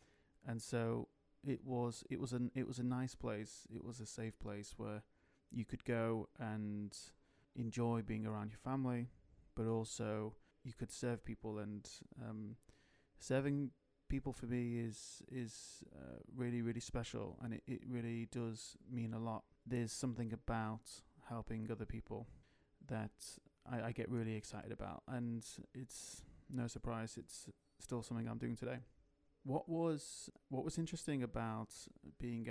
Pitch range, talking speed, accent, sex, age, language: 110-125 Hz, 155 wpm, British, male, 30-49, English